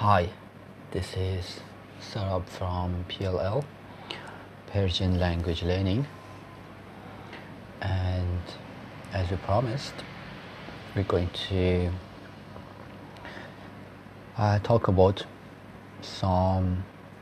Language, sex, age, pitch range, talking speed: Persian, male, 30-49, 95-105 Hz, 70 wpm